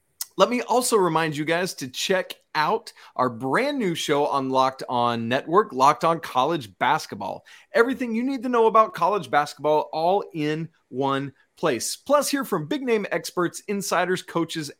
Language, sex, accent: English, male, American